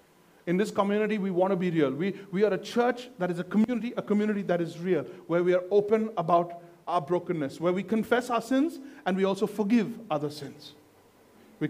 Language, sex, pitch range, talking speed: English, male, 170-230 Hz, 210 wpm